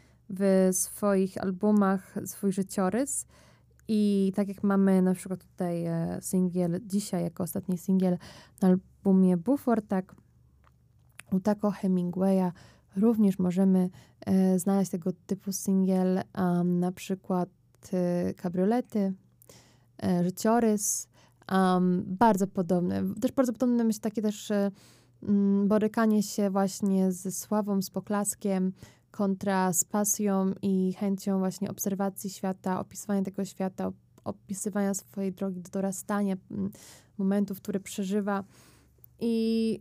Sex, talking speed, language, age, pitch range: female, 110 wpm, Polish, 20-39, 190-215 Hz